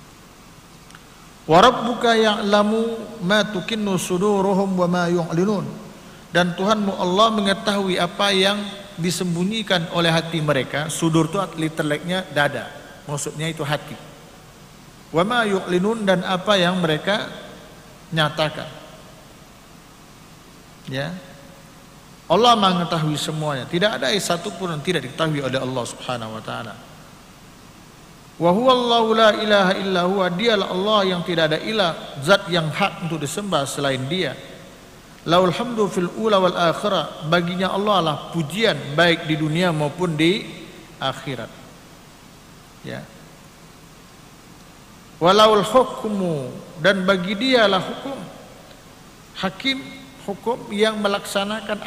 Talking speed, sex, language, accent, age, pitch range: 95 wpm, male, Indonesian, native, 50-69, 160-200 Hz